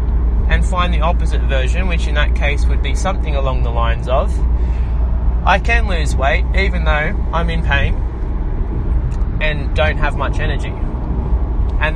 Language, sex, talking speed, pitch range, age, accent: English, male, 155 wpm, 65-80 Hz, 20-39, Australian